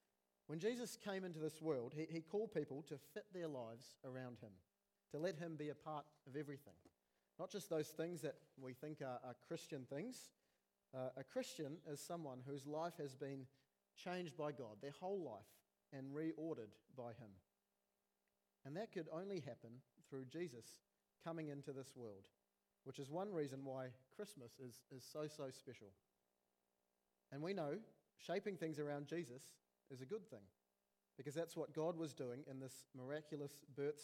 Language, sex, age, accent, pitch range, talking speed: English, male, 40-59, Australian, 130-160 Hz, 170 wpm